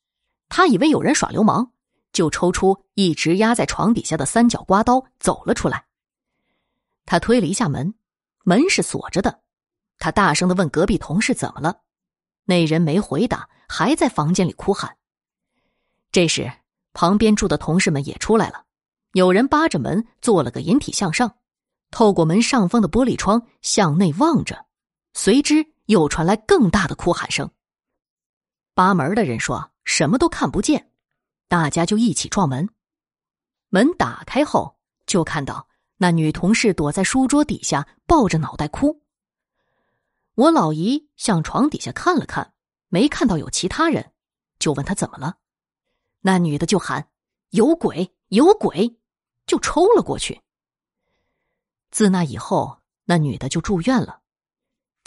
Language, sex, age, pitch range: Chinese, female, 20-39, 170-240 Hz